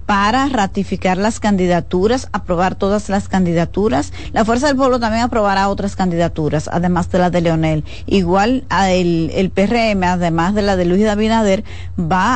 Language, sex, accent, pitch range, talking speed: Spanish, female, American, 180-220 Hz, 165 wpm